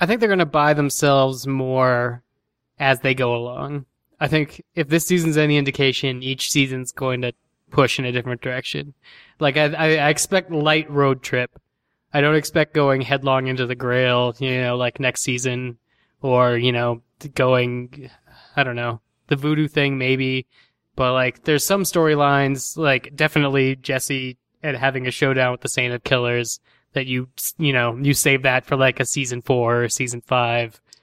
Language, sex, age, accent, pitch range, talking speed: English, male, 20-39, American, 125-150 Hz, 175 wpm